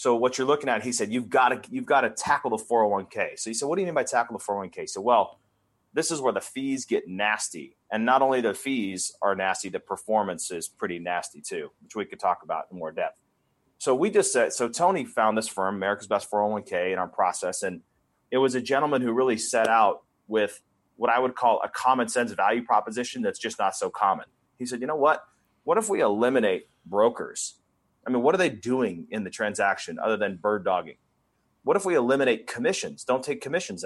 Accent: American